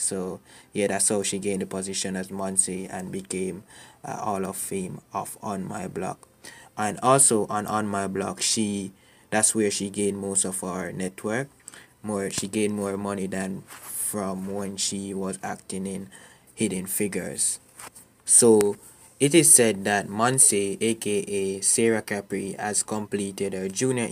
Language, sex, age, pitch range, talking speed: English, male, 20-39, 95-105 Hz, 155 wpm